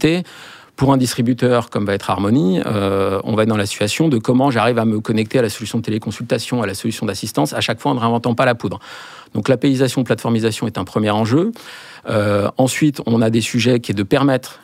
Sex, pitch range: male, 105-125 Hz